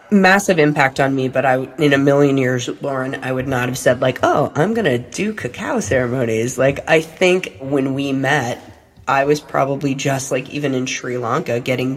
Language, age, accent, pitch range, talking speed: English, 30-49, American, 125-145 Hz, 200 wpm